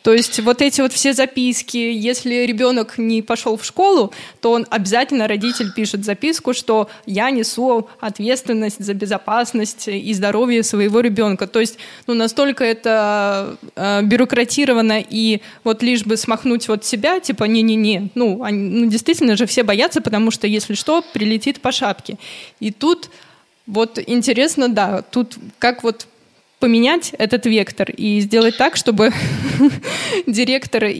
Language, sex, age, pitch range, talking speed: Russian, female, 20-39, 200-240 Hz, 140 wpm